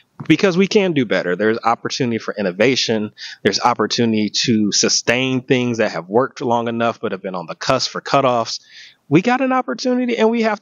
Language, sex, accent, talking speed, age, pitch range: English, male, American, 190 wpm, 30-49, 110-150 Hz